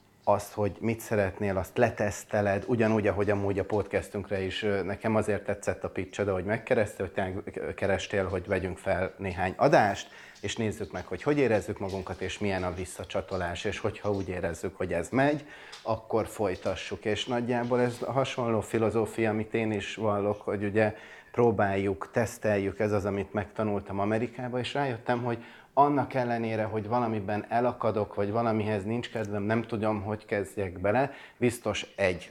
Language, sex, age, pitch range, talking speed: Hungarian, male, 30-49, 95-115 Hz, 155 wpm